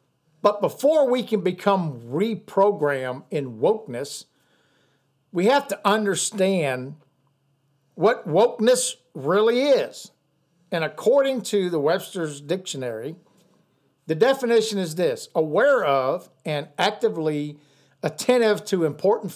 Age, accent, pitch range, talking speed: 50-69, American, 150-200 Hz, 100 wpm